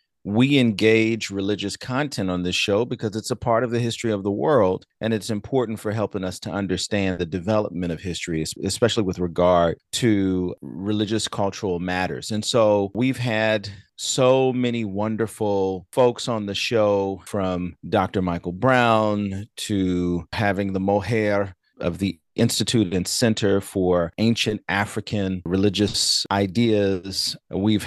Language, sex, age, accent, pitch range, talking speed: English, male, 30-49, American, 95-115 Hz, 140 wpm